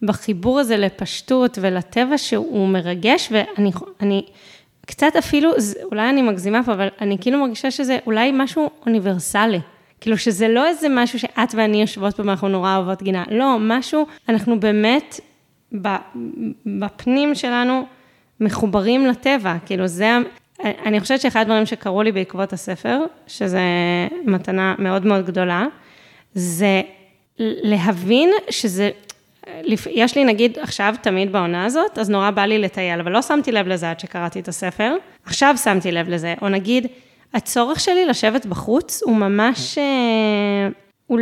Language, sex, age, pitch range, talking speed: Hebrew, female, 20-39, 200-250 Hz, 140 wpm